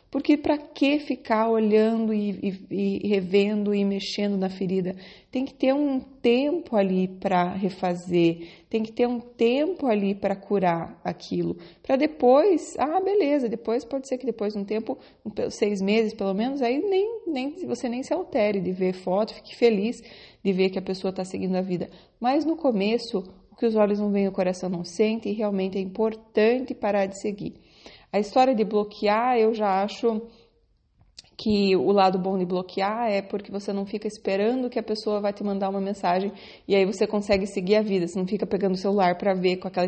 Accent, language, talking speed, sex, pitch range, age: Brazilian, Portuguese, 195 wpm, female, 190-225 Hz, 30-49